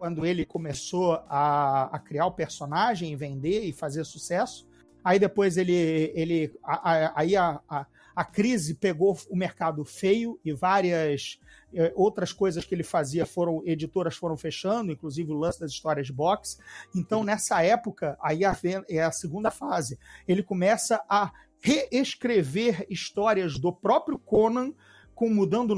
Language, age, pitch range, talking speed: Portuguese, 40-59, 175-225 Hz, 140 wpm